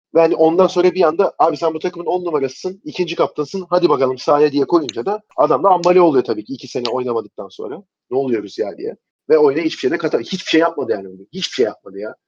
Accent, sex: native, male